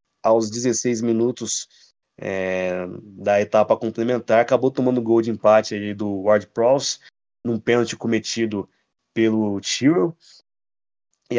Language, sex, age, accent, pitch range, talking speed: Portuguese, male, 20-39, Brazilian, 105-130 Hz, 115 wpm